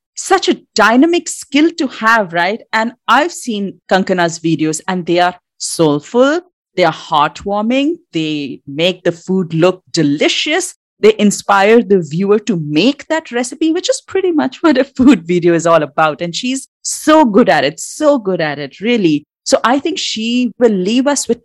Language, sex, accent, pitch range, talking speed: English, female, Indian, 180-280 Hz, 175 wpm